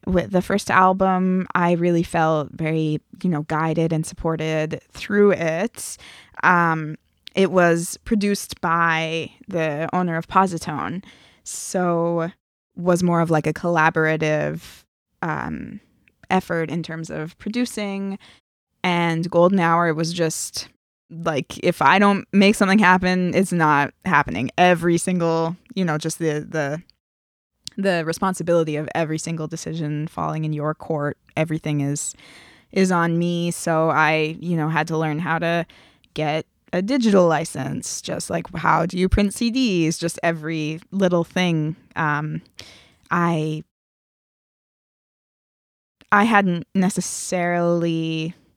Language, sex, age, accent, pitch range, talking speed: English, female, 20-39, American, 155-180 Hz, 130 wpm